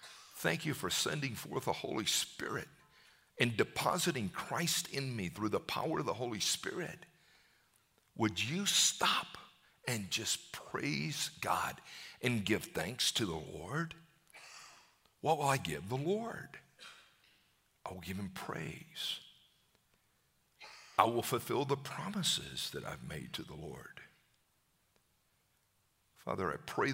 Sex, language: male, English